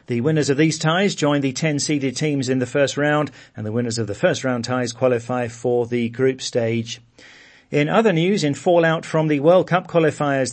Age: 40-59